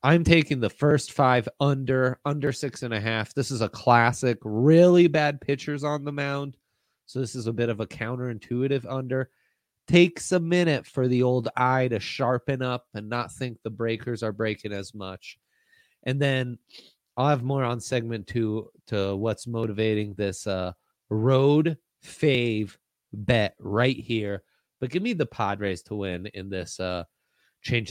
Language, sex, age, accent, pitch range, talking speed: English, male, 30-49, American, 110-150 Hz, 170 wpm